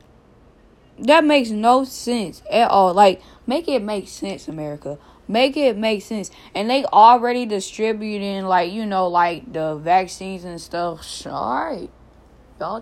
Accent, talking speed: American, 150 wpm